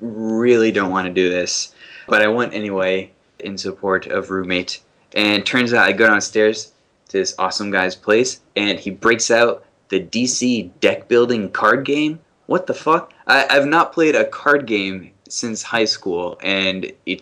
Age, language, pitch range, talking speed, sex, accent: 20-39, English, 95-115 Hz, 170 wpm, male, American